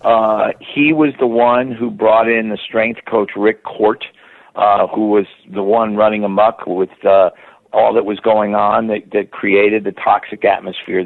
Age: 50-69